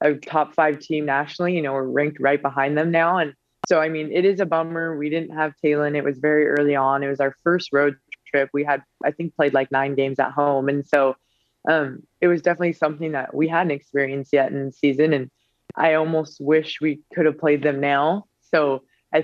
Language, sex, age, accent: English, female, 20-39, American